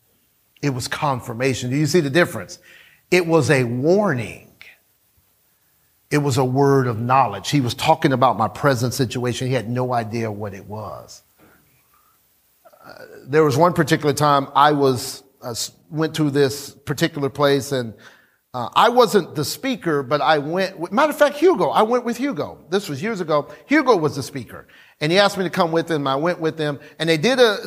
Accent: American